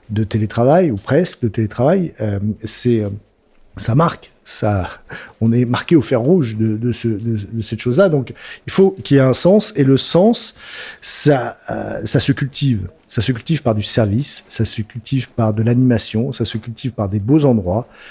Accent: French